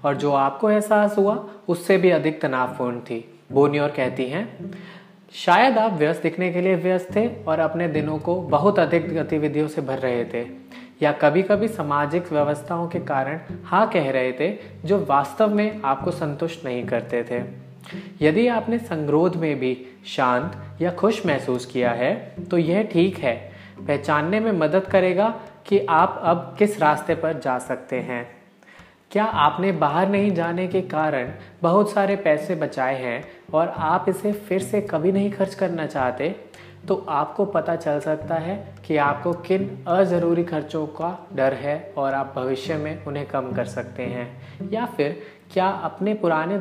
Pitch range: 145-190 Hz